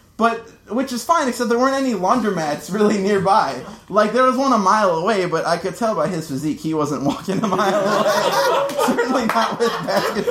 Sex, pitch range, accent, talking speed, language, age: male, 135-210 Hz, American, 205 wpm, English, 20-39